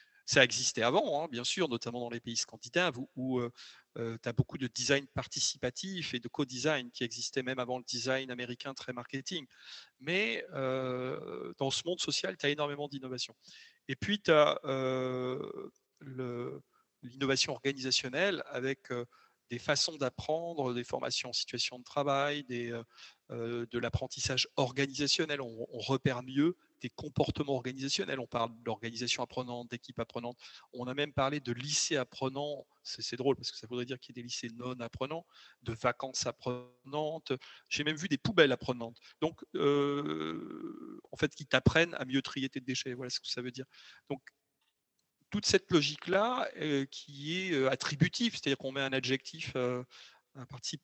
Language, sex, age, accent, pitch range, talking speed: French, male, 40-59, French, 125-145 Hz, 170 wpm